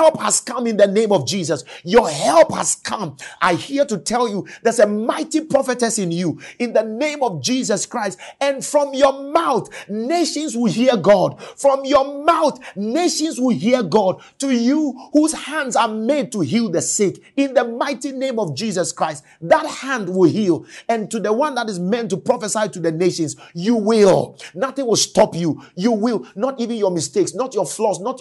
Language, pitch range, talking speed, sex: English, 170-250 Hz, 200 wpm, male